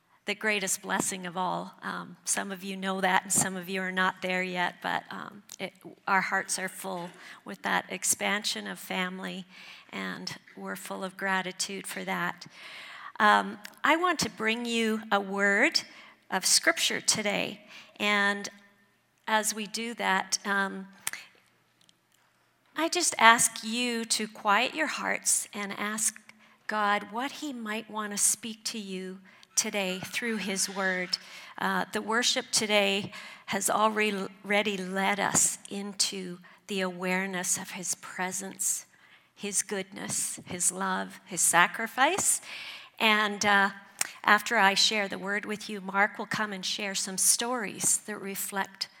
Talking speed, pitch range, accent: 140 wpm, 190-215 Hz, American